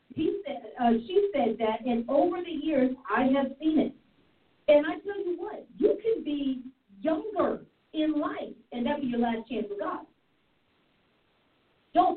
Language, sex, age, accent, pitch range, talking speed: English, female, 40-59, American, 220-275 Hz, 175 wpm